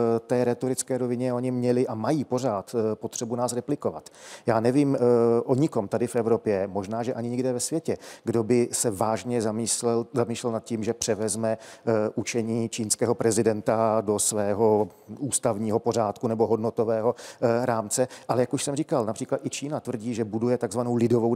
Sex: male